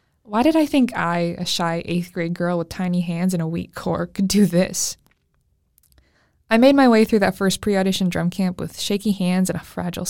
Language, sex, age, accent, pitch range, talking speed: English, female, 20-39, American, 175-220 Hz, 215 wpm